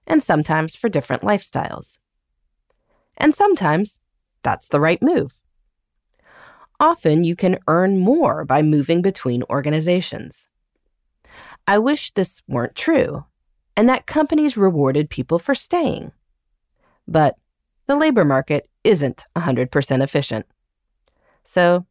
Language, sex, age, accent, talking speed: English, female, 30-49, American, 110 wpm